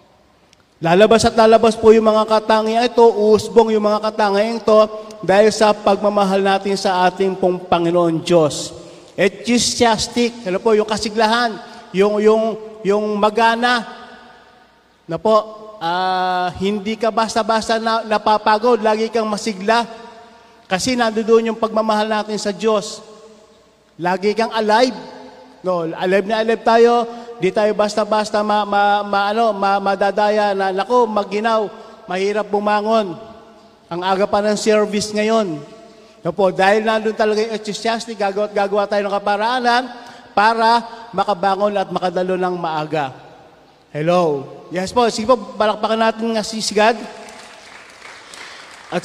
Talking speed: 125 wpm